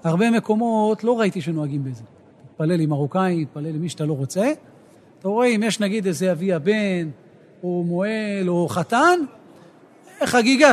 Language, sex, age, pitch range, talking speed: Hebrew, male, 40-59, 160-230 Hz, 160 wpm